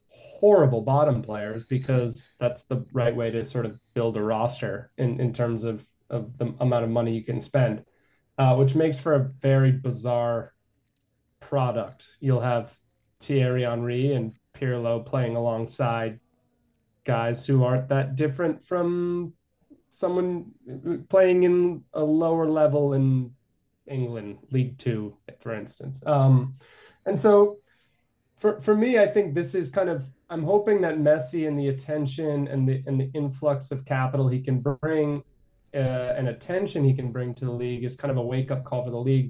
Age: 20-39